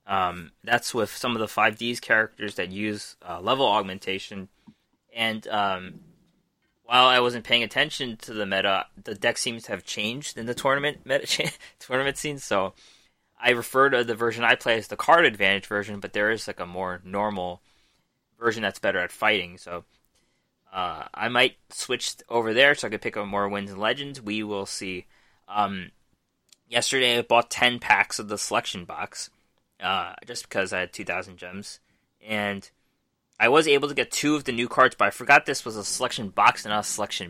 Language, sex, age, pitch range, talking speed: English, male, 20-39, 100-120 Hz, 195 wpm